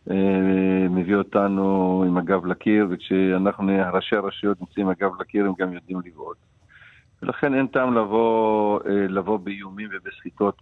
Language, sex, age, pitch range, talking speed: English, male, 50-69, 90-110 Hz, 125 wpm